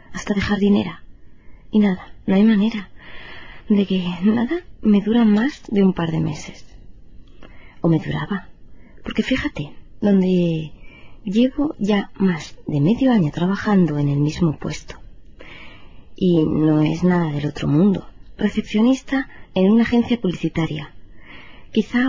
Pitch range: 155-210 Hz